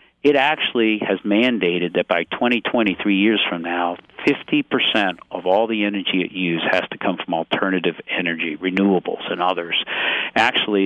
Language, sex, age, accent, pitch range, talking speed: English, male, 50-69, American, 90-110 Hz, 160 wpm